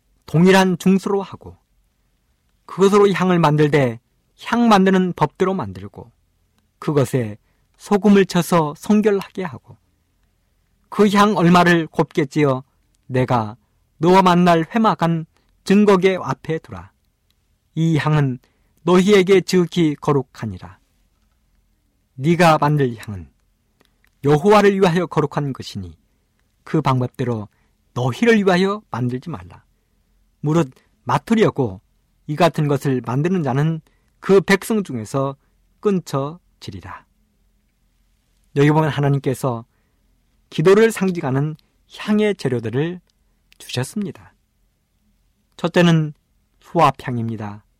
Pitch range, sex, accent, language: 110-180 Hz, male, native, Korean